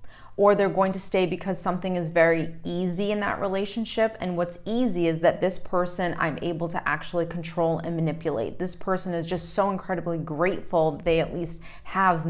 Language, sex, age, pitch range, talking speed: English, female, 30-49, 165-185 Hz, 185 wpm